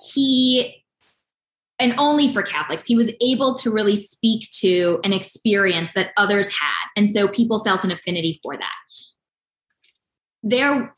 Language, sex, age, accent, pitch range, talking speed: English, female, 20-39, American, 190-245 Hz, 140 wpm